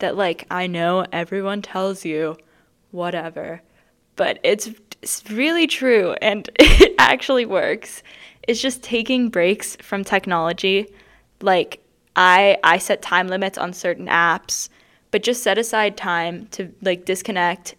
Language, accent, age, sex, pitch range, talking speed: English, American, 10-29, female, 170-200 Hz, 135 wpm